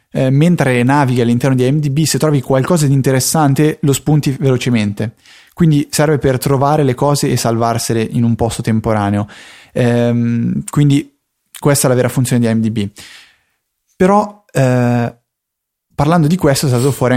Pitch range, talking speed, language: 115-135 Hz, 145 wpm, Italian